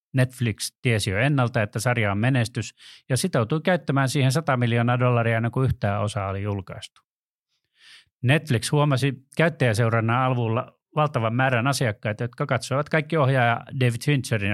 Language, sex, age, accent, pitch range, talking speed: Finnish, male, 30-49, native, 115-145 Hz, 135 wpm